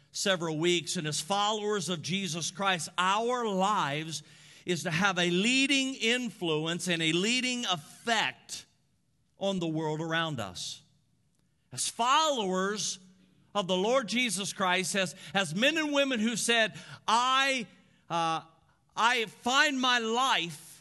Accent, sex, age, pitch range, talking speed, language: American, male, 50-69, 160-225 Hz, 130 wpm, English